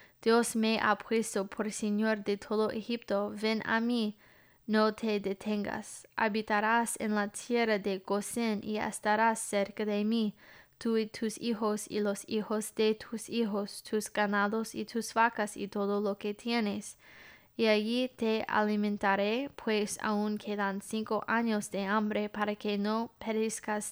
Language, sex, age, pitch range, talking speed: English, female, 20-39, 210-225 Hz, 155 wpm